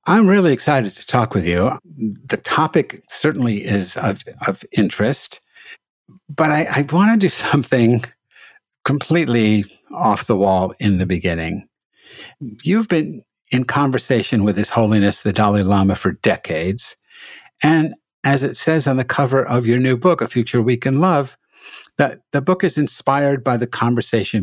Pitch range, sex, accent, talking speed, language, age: 105-155 Hz, male, American, 155 wpm, English, 60-79